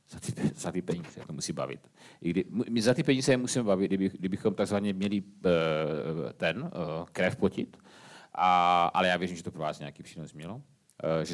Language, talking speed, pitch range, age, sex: Czech, 200 wpm, 90-105 Hz, 40-59, male